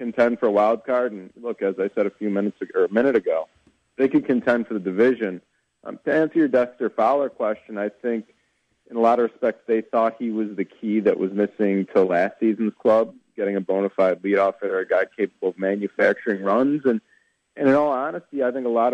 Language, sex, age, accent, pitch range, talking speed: English, male, 40-59, American, 100-115 Hz, 230 wpm